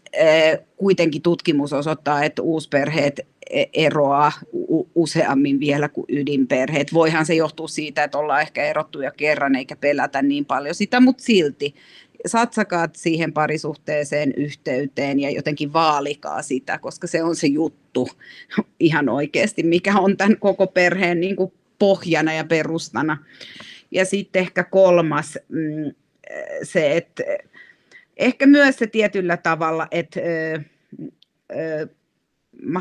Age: 30-49